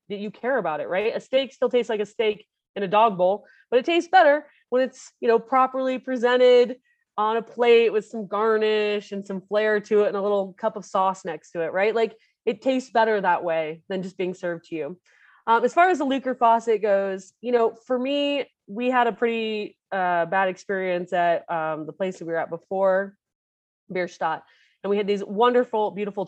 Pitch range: 185-230 Hz